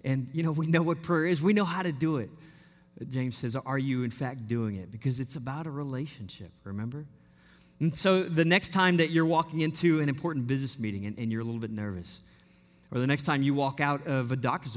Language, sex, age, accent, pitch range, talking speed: English, male, 30-49, American, 130-195 Hz, 235 wpm